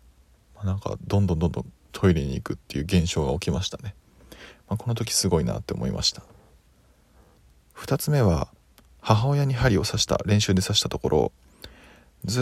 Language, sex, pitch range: Japanese, male, 80-115 Hz